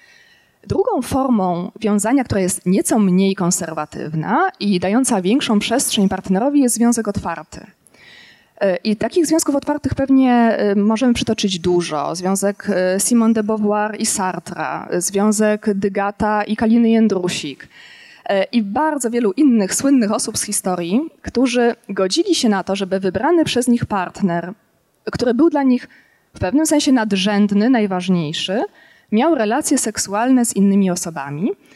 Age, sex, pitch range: 20-39, female, 190-255 Hz